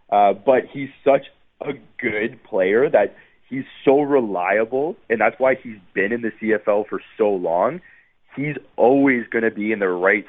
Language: English